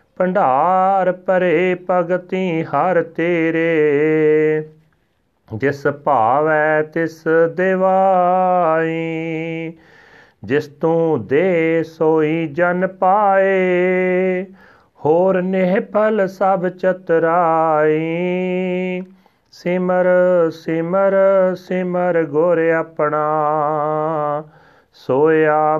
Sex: male